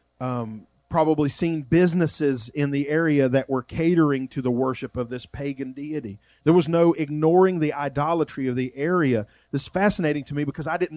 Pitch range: 120-155 Hz